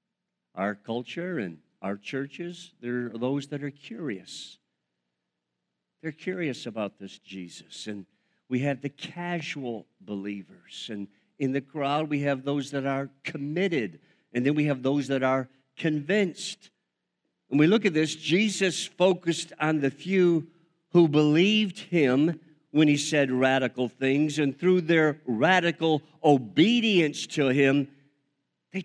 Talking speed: 135 wpm